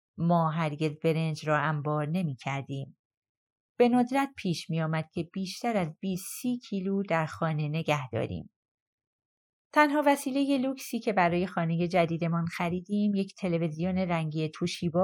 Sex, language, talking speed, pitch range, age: female, Persian, 135 wpm, 155-200 Hz, 30-49